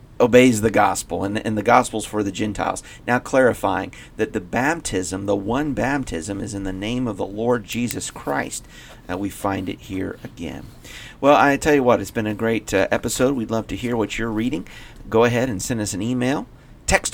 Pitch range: 95-120 Hz